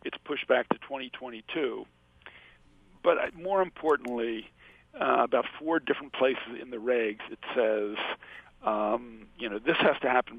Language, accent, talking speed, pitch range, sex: English, American, 145 wpm, 110-130 Hz, male